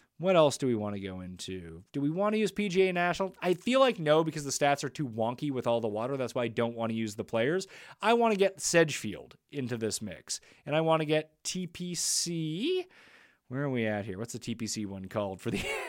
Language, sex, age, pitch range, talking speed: English, male, 30-49, 115-170 Hz, 240 wpm